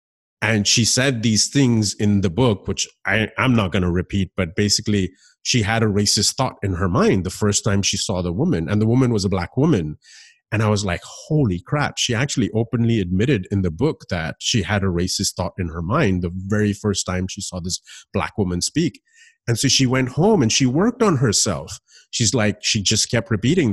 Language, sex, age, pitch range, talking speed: English, male, 30-49, 100-120 Hz, 215 wpm